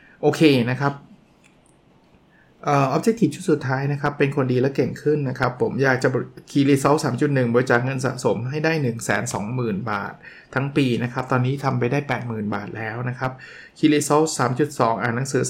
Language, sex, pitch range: Thai, male, 125-150 Hz